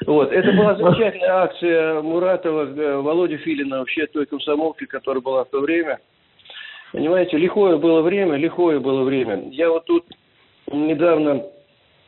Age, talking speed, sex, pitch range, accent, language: 40-59, 135 wpm, male, 145-180 Hz, native, Russian